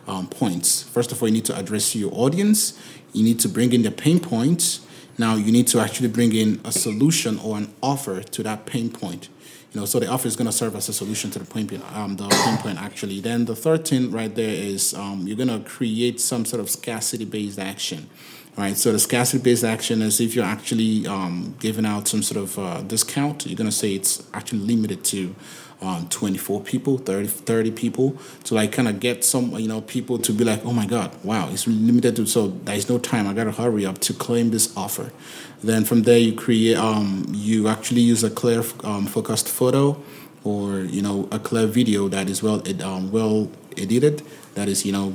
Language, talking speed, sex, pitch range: English, 220 wpm, male, 100-120 Hz